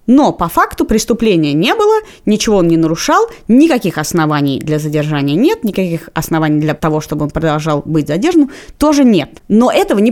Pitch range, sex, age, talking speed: 165-240 Hz, female, 20-39, 170 wpm